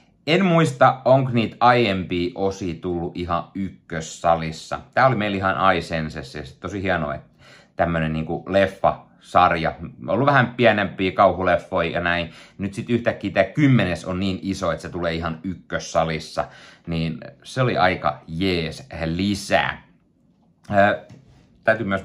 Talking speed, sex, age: 130 wpm, male, 30-49